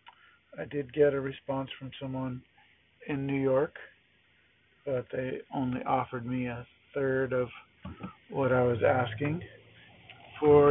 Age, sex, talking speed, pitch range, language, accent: 50-69, male, 130 wpm, 115-145 Hz, English, American